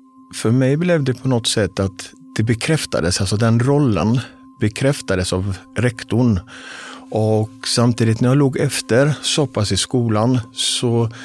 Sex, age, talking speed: male, 50-69, 140 wpm